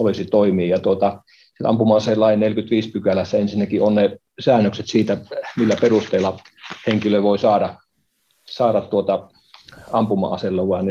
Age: 40-59